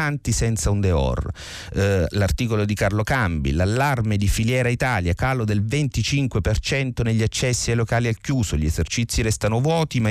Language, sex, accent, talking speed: Italian, male, native, 155 wpm